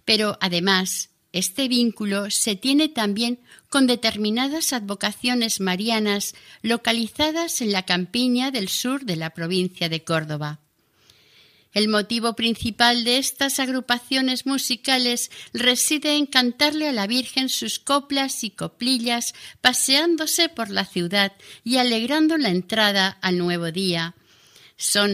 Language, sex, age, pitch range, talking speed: Spanish, female, 50-69, 185-250 Hz, 120 wpm